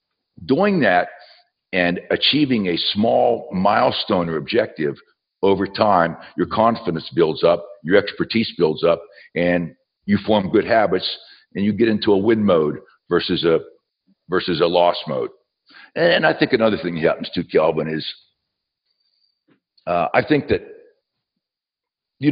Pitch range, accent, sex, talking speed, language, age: 100-145 Hz, American, male, 140 wpm, English, 60-79